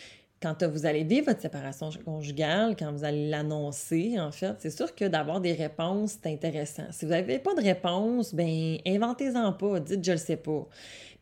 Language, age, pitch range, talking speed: French, 20-39, 150-180 Hz, 200 wpm